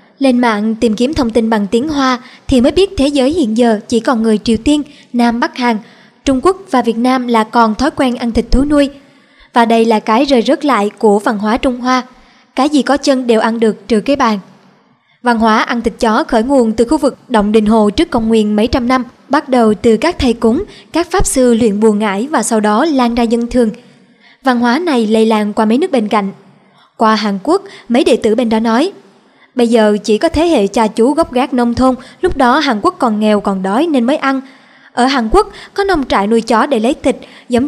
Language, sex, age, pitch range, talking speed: Vietnamese, male, 20-39, 225-270 Hz, 240 wpm